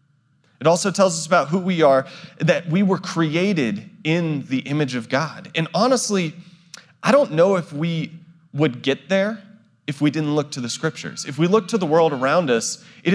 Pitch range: 155-200 Hz